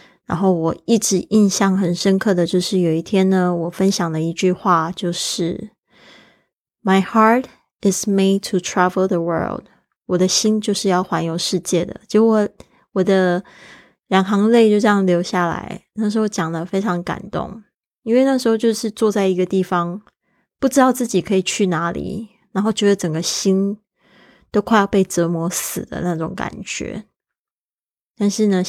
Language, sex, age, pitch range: Chinese, female, 20-39, 175-200 Hz